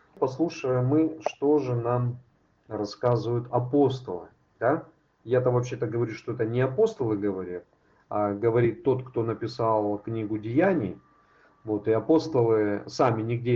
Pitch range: 115-145 Hz